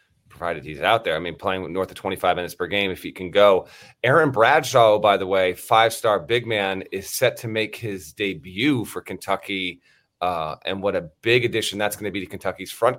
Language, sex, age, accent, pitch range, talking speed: English, male, 30-49, American, 95-120 Hz, 220 wpm